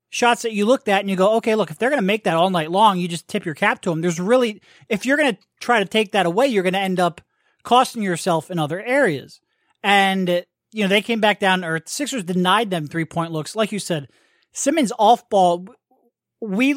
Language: English